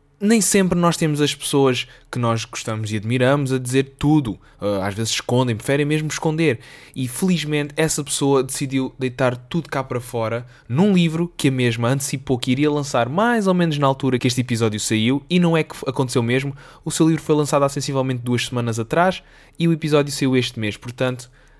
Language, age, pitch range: Portuguese, 20-39, 115-145 Hz